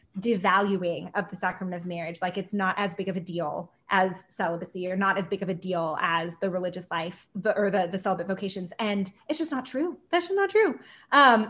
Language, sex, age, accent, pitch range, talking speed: English, female, 20-39, American, 190-235 Hz, 225 wpm